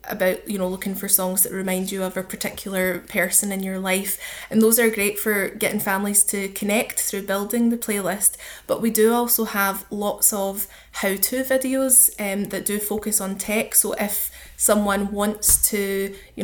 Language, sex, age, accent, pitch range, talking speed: English, female, 10-29, British, 195-215 Hz, 185 wpm